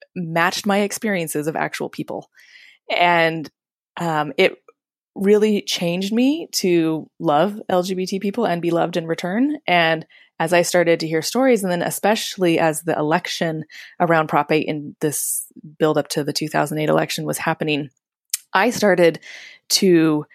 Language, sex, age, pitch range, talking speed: English, female, 20-39, 155-190 Hz, 145 wpm